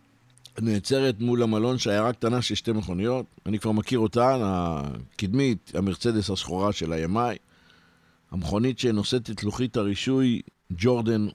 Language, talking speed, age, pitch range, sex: Hebrew, 120 wpm, 50-69, 100-130 Hz, male